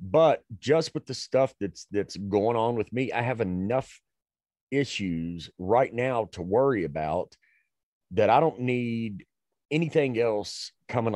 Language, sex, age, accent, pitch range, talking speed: English, male, 40-59, American, 80-115 Hz, 145 wpm